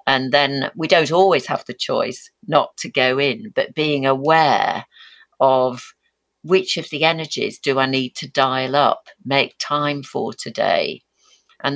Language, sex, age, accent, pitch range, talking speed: English, female, 50-69, British, 125-150 Hz, 160 wpm